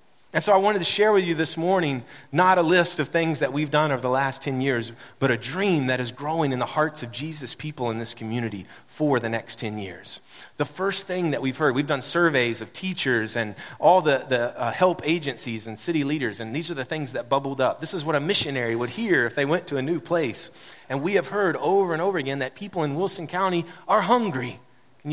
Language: English